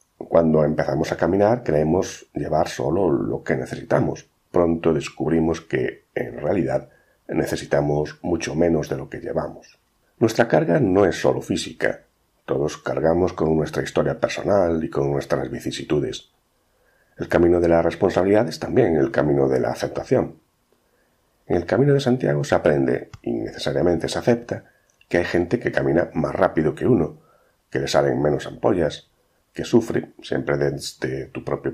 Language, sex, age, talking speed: Spanish, male, 40-59, 155 wpm